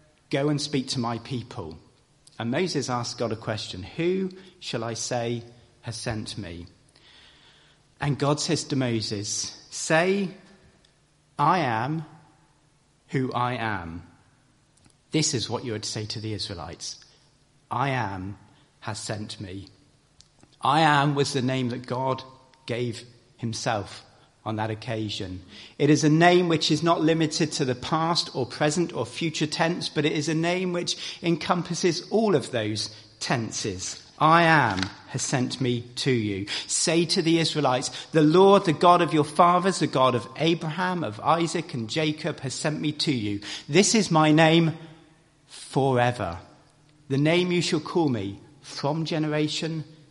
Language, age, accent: English, 40-59, British